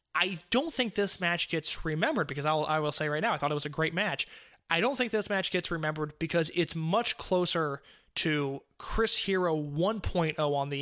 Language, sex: English, male